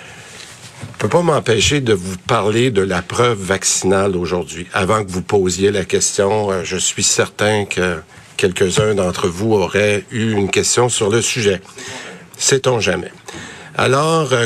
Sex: male